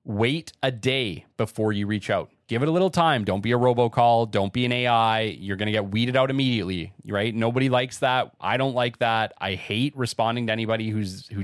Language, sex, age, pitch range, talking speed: English, male, 30-49, 105-135 Hz, 220 wpm